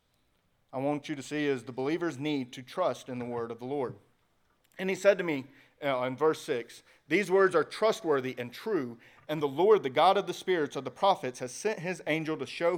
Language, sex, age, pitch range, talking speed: English, male, 40-59, 130-175 Hz, 235 wpm